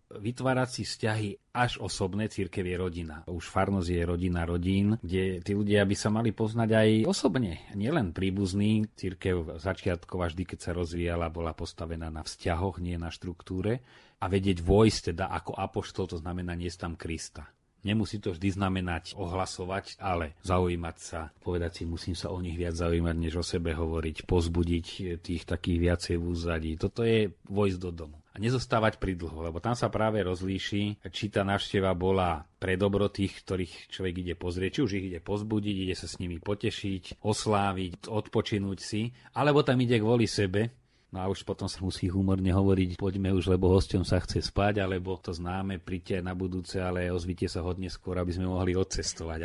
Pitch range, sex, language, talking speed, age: 90-105 Hz, male, Slovak, 180 wpm, 40-59